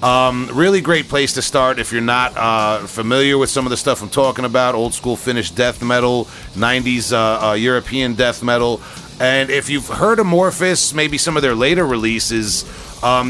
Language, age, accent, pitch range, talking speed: English, 40-59, American, 115-140 Hz, 190 wpm